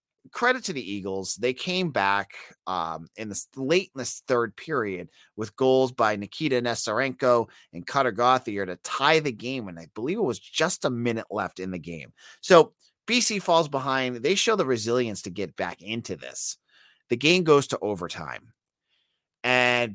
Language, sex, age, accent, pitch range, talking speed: English, male, 30-49, American, 100-140 Hz, 175 wpm